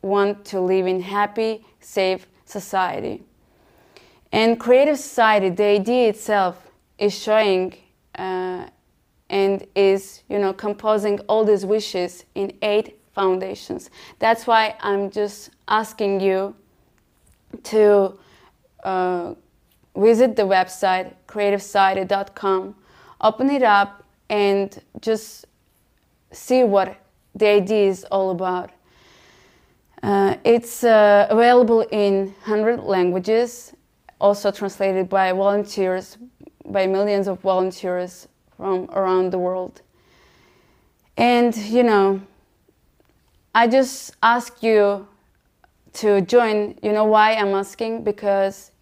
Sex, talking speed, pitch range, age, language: female, 105 wpm, 195-220 Hz, 20-39, English